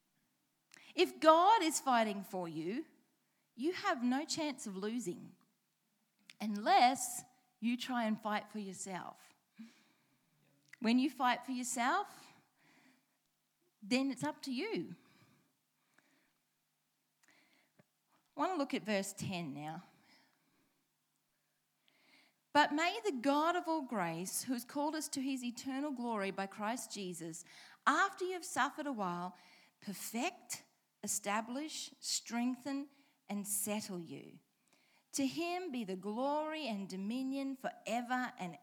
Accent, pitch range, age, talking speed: Australian, 205-285 Hz, 30-49, 120 wpm